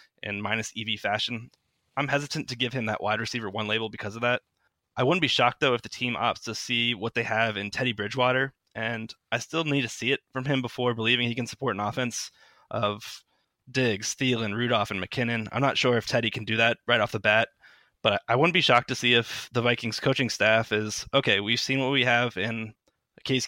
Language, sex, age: English, male, 20-39